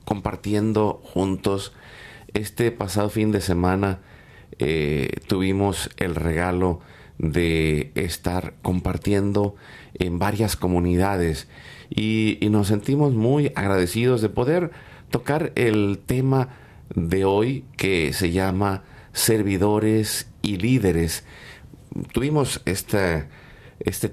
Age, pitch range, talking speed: 40-59, 90-110 Hz, 95 wpm